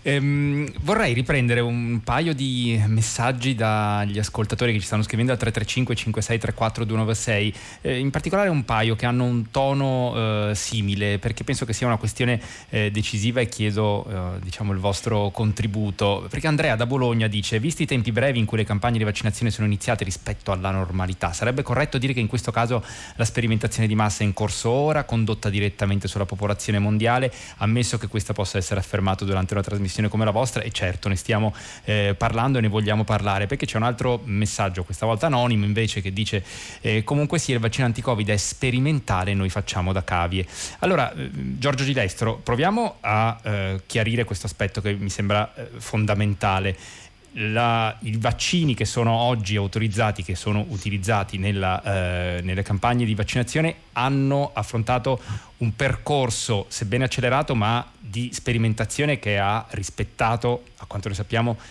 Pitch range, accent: 100-120 Hz, native